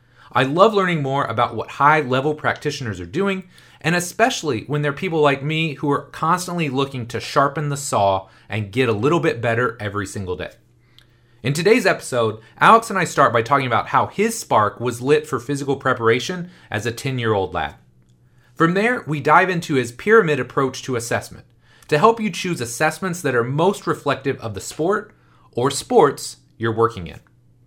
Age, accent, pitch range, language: 30-49, American, 115-160 Hz, English